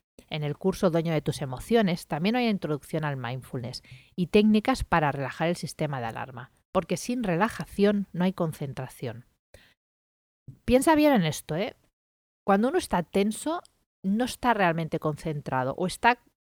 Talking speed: 150 wpm